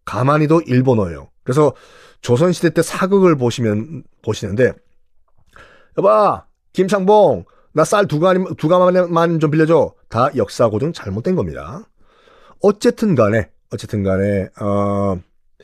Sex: male